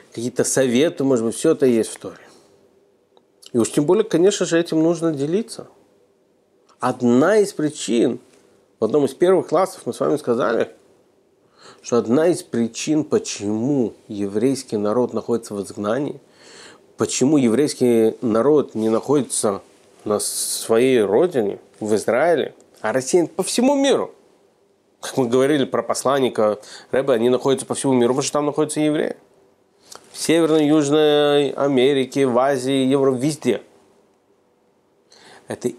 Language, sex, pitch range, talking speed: Russian, male, 125-180 Hz, 135 wpm